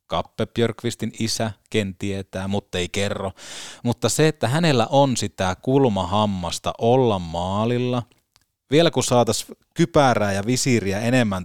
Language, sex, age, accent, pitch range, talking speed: Finnish, male, 30-49, native, 95-115 Hz, 120 wpm